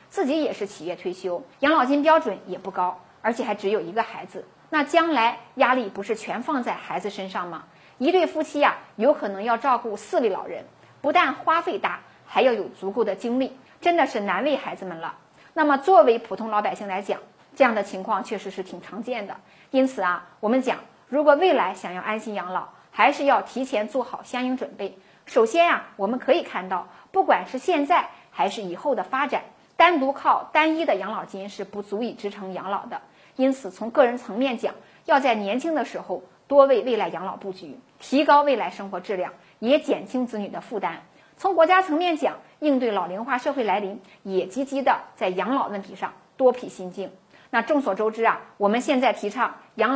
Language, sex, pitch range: Chinese, female, 200-290 Hz